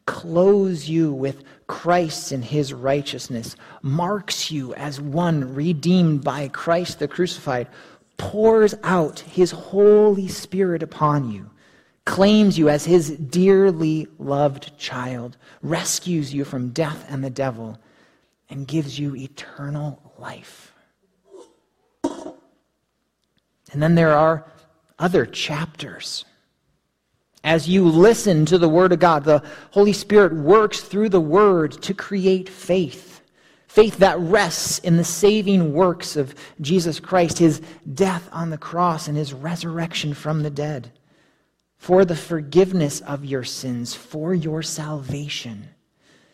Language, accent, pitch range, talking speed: English, American, 145-185 Hz, 125 wpm